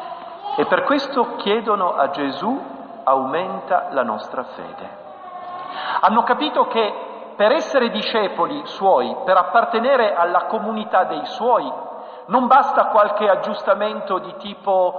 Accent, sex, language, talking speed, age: native, male, Italian, 115 wpm, 50-69